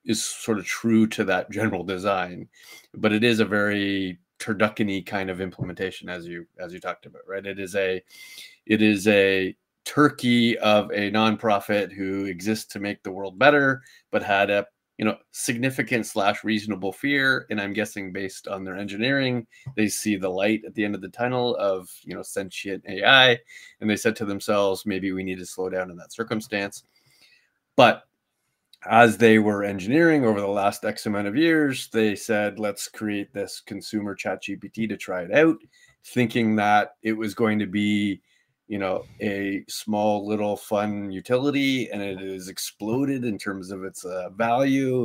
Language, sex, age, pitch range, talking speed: English, male, 30-49, 100-115 Hz, 180 wpm